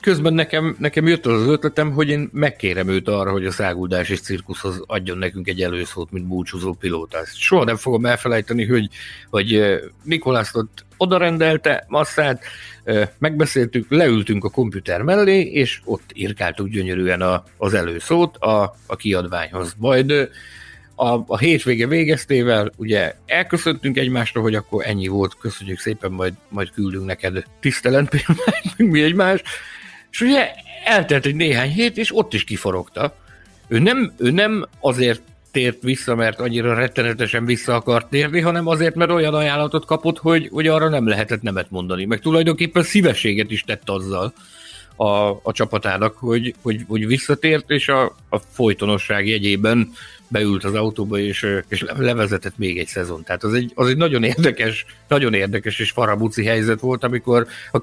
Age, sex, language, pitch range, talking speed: 60-79, male, Hungarian, 100-145 Hz, 150 wpm